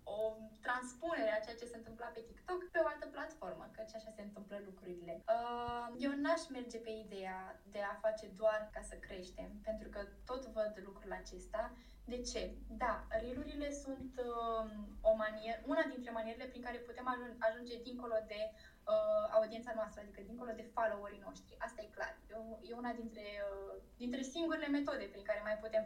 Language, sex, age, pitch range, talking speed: Romanian, female, 10-29, 215-305 Hz, 165 wpm